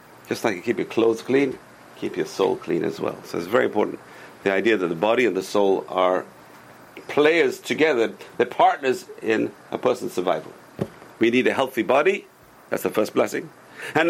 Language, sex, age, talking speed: English, male, 50-69, 185 wpm